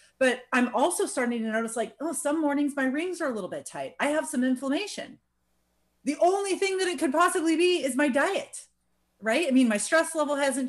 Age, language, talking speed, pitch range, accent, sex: 30-49, English, 220 wpm, 210-295 Hz, American, female